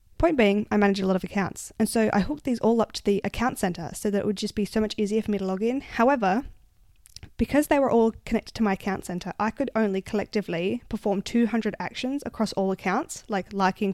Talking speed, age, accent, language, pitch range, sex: 235 wpm, 10-29, Australian, English, 195-245 Hz, female